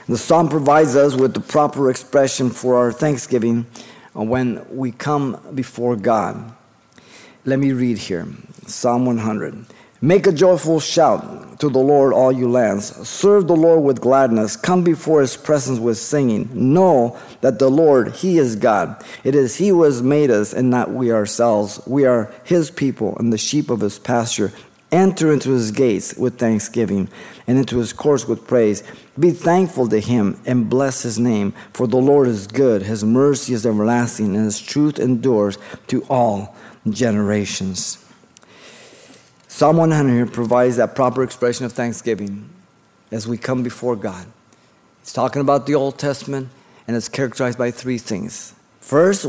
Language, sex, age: English, male, 50-69